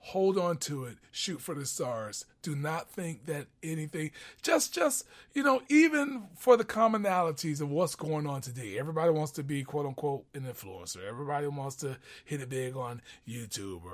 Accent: American